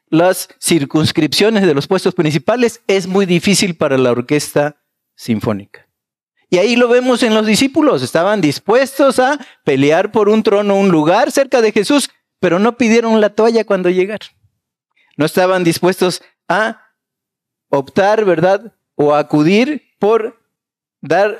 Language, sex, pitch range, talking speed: Spanish, male, 155-220 Hz, 135 wpm